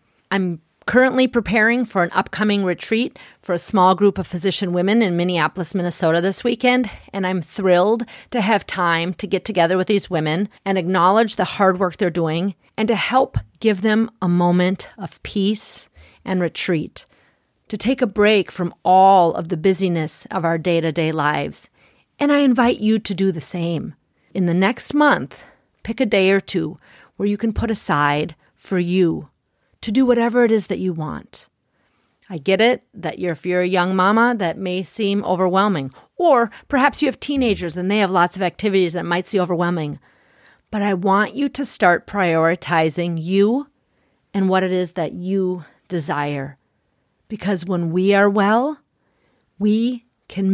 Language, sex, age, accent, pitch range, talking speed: English, female, 40-59, American, 170-210 Hz, 170 wpm